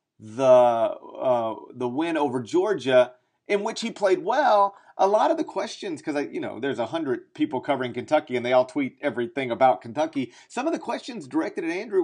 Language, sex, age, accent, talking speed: English, male, 40-59, American, 200 wpm